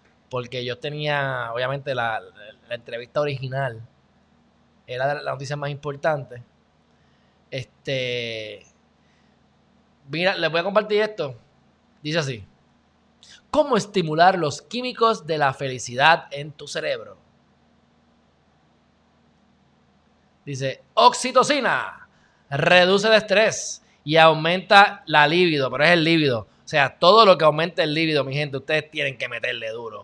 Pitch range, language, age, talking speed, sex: 135-190 Hz, Spanish, 20-39, 120 wpm, male